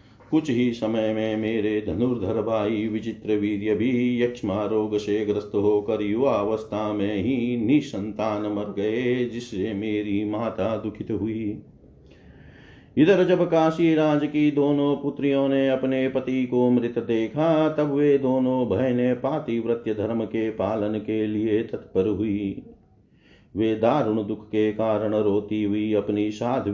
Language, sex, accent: Hindi, male, native